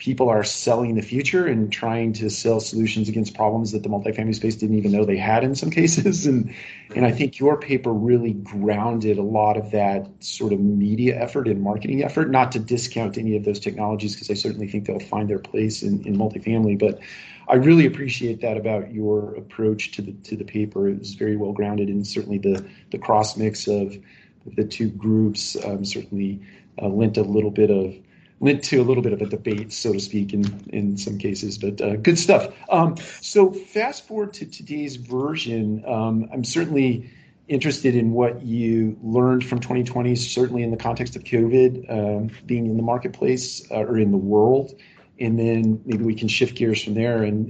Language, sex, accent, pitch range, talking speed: English, male, American, 105-125 Hz, 200 wpm